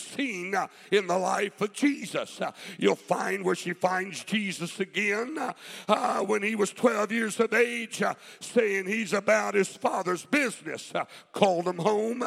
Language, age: English, 60-79